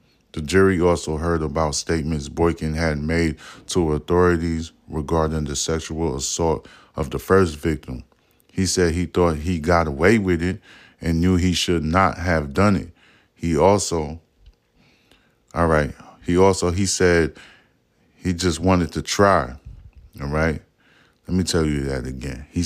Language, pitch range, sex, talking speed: English, 80-90 Hz, male, 155 wpm